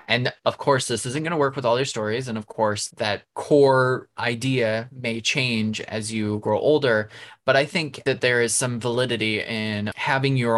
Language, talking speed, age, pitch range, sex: English, 200 wpm, 20-39, 110-135 Hz, male